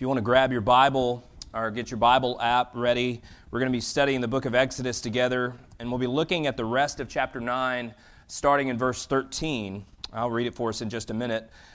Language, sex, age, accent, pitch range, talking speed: English, male, 30-49, American, 115-145 Hz, 235 wpm